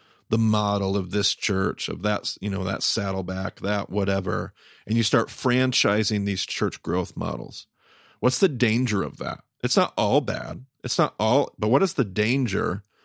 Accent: American